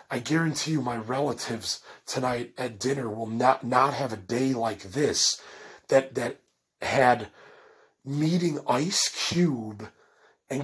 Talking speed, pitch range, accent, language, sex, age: 130 wpm, 125-160 Hz, American, English, male, 30-49